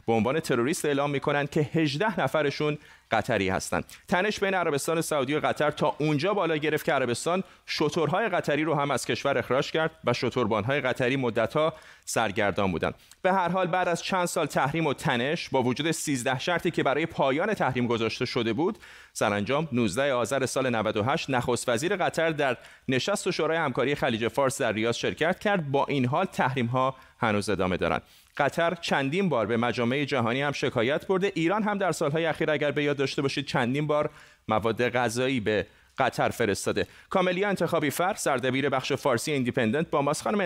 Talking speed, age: 175 wpm, 30-49